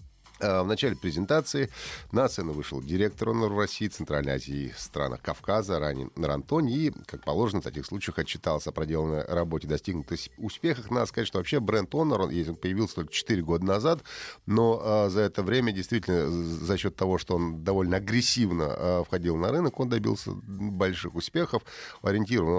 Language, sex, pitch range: Russian, male, 85-110 Hz